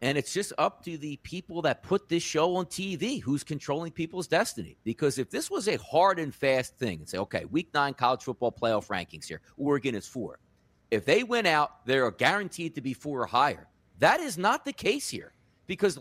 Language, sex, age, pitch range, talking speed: English, male, 40-59, 140-220 Hz, 215 wpm